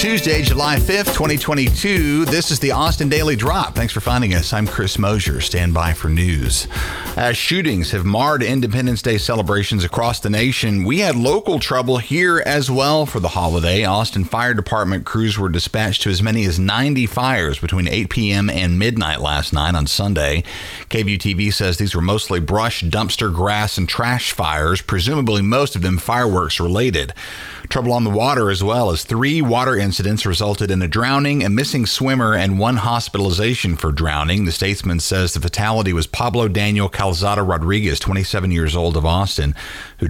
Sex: male